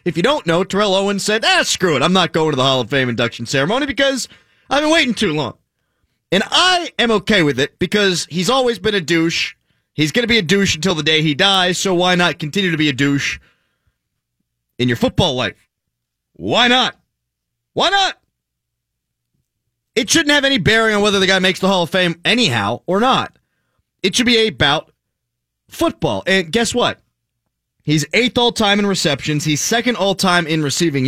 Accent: American